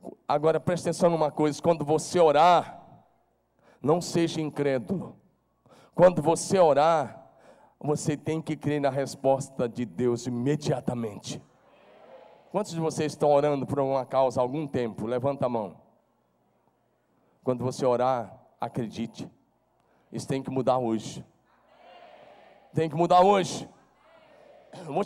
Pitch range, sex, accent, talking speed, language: 150-210 Hz, male, Brazilian, 120 wpm, Portuguese